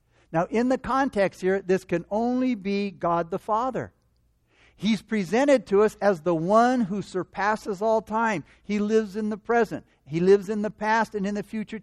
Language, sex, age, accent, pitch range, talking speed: English, male, 60-79, American, 165-220 Hz, 190 wpm